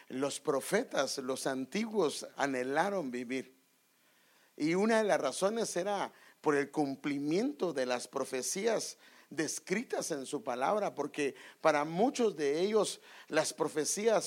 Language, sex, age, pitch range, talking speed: English, male, 50-69, 150-210 Hz, 120 wpm